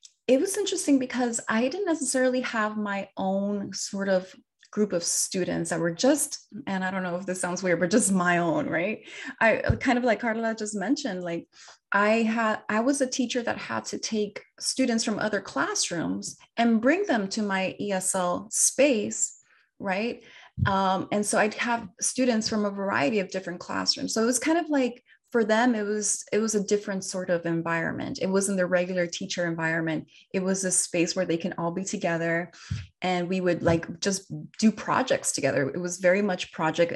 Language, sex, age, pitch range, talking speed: English, female, 20-39, 180-230 Hz, 195 wpm